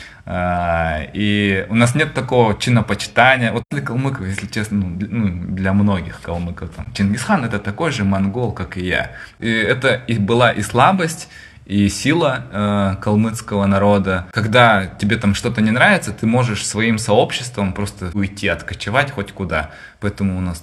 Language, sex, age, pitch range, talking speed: Russian, male, 20-39, 95-115 Hz, 150 wpm